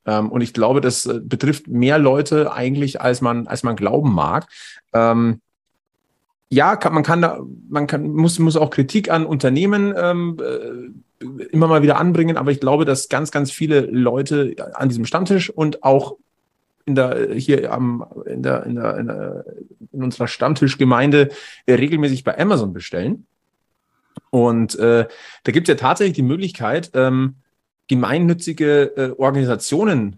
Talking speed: 145 wpm